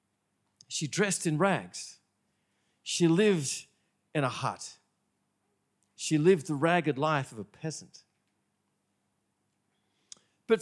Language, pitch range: English, 150-200 Hz